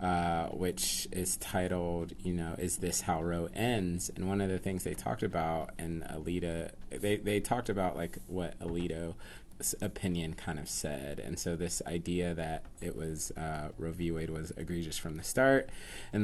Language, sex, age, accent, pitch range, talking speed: English, male, 30-49, American, 85-120 Hz, 180 wpm